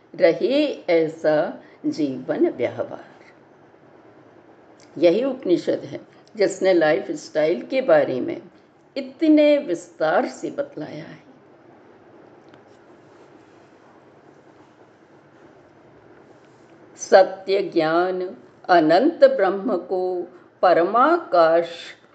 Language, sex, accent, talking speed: Hindi, female, native, 65 wpm